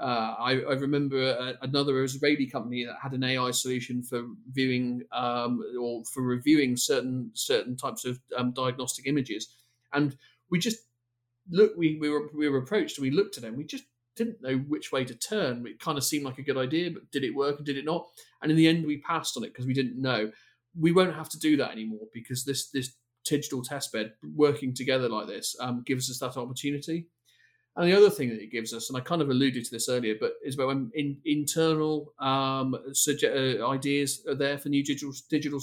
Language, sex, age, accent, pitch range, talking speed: English, male, 40-59, British, 120-145 Hz, 220 wpm